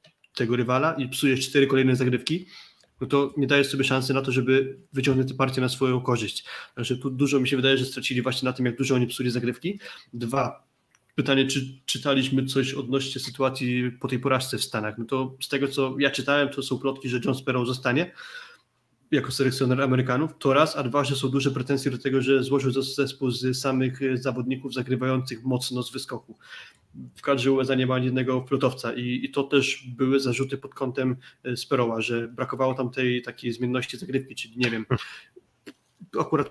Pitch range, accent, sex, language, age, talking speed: 125-135 Hz, native, male, Polish, 20-39, 185 wpm